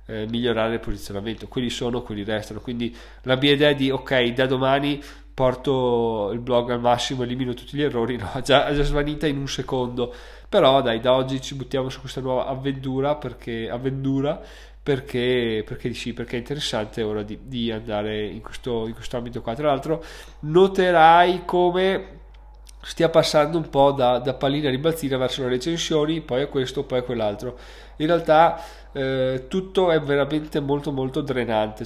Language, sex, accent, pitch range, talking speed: Italian, male, native, 120-145 Hz, 175 wpm